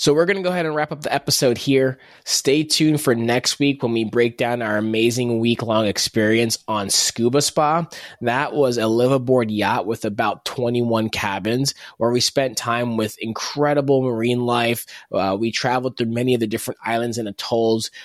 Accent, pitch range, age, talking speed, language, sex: American, 110-130 Hz, 20-39, 185 wpm, English, male